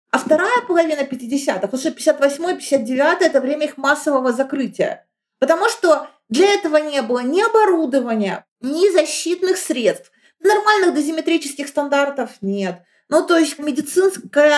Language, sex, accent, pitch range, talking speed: Russian, female, native, 235-310 Hz, 135 wpm